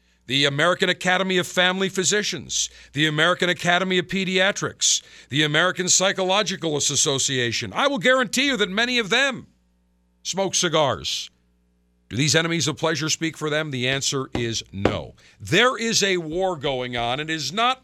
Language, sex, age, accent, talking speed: English, male, 50-69, American, 160 wpm